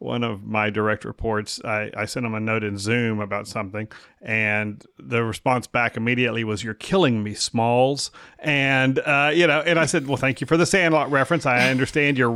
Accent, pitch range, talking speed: American, 110-140 Hz, 205 wpm